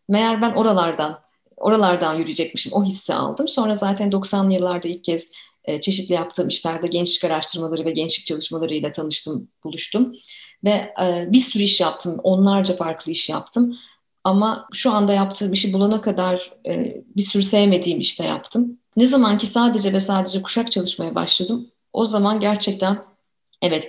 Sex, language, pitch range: female, Turkish, 175-225 Hz